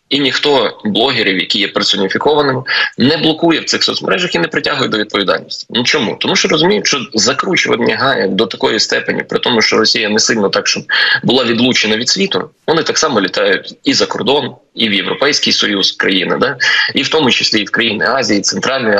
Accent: native